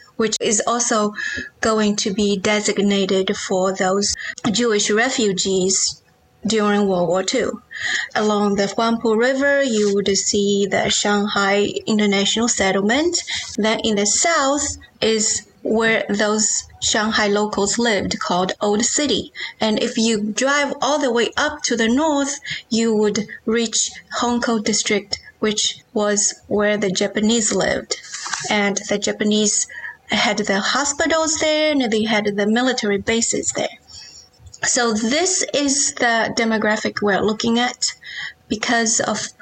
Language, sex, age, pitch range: English, female, 30-49, 210-250 Hz